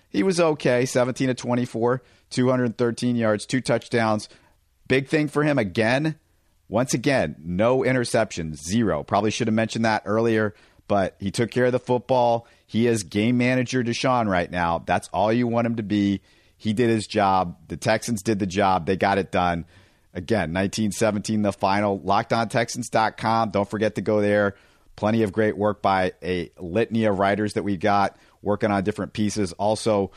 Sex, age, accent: male, 50-69, American